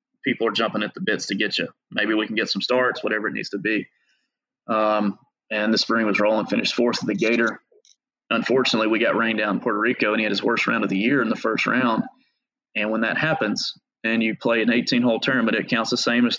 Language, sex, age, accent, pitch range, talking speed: English, male, 30-49, American, 105-140 Hz, 250 wpm